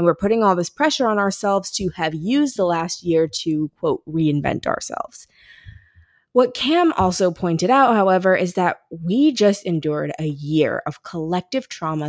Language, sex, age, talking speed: English, female, 20-39, 170 wpm